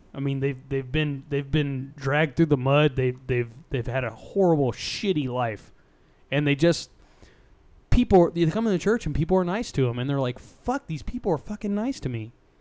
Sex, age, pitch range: male, 20-39, 130-185 Hz